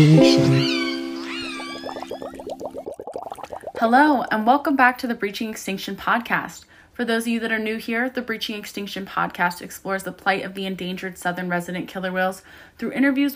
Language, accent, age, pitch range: English, American, 20-39, 185-230 Hz